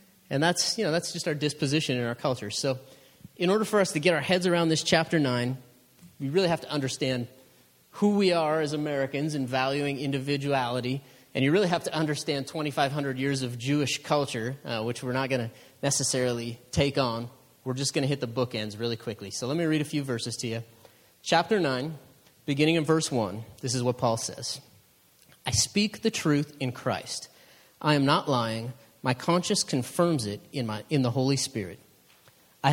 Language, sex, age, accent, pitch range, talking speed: English, male, 30-49, American, 125-155 Hz, 195 wpm